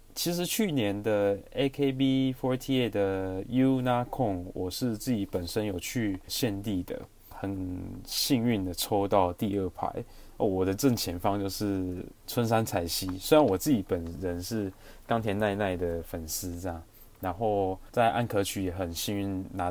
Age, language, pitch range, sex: 20-39, Chinese, 90-110 Hz, male